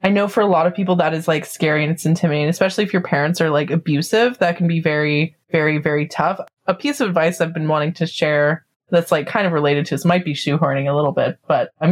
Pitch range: 155-200 Hz